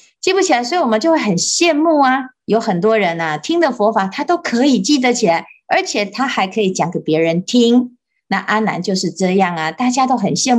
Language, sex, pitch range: Chinese, female, 190-260 Hz